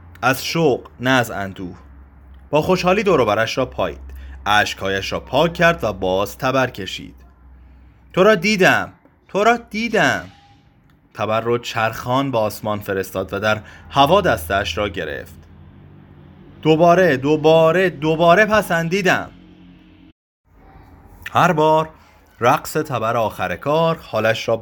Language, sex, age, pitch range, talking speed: Persian, male, 30-49, 95-140 Hz, 120 wpm